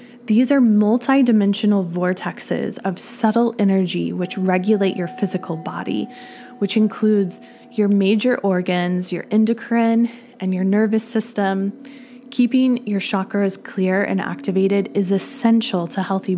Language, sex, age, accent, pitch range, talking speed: English, female, 20-39, American, 195-240 Hz, 120 wpm